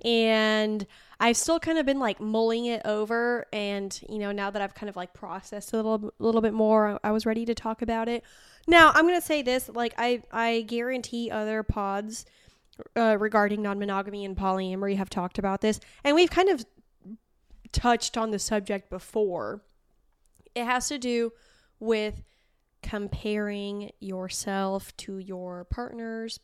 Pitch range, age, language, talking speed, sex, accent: 195-230 Hz, 10-29, English, 165 wpm, female, American